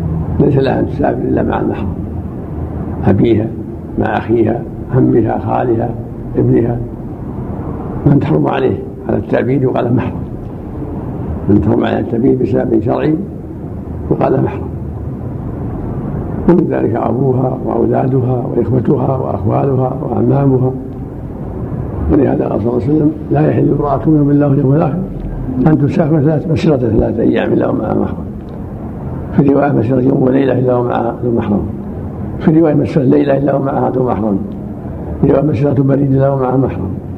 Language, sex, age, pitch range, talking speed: Arabic, male, 60-79, 115-145 Hz, 130 wpm